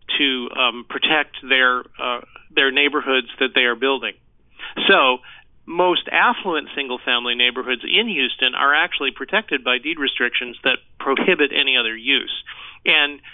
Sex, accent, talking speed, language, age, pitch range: male, American, 130 wpm, English, 40-59, 125-150 Hz